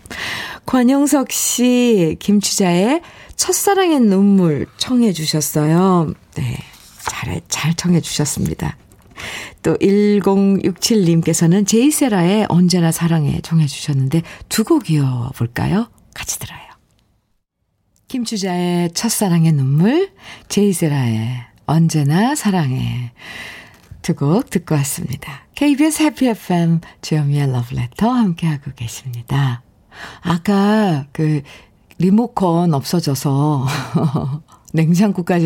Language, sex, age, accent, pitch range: Korean, female, 50-69, native, 145-215 Hz